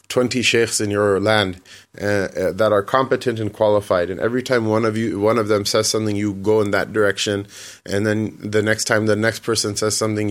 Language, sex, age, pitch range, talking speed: English, male, 30-49, 100-115 Hz, 220 wpm